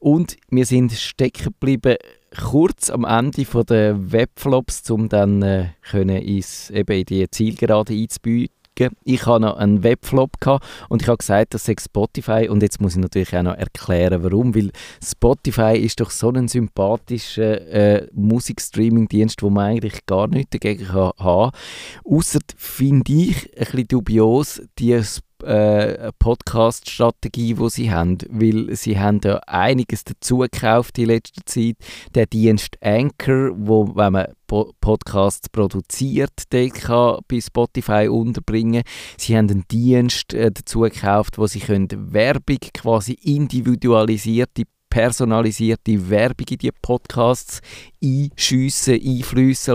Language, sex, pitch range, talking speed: German, male, 105-120 Hz, 135 wpm